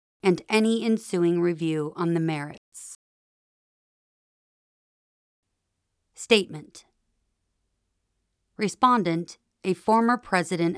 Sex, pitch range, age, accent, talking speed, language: female, 170-205 Hz, 40-59, American, 65 wpm, English